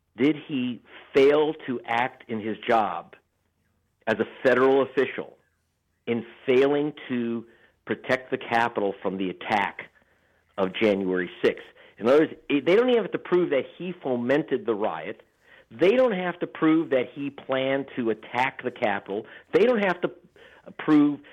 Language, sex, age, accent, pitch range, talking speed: English, male, 50-69, American, 115-155 Hz, 155 wpm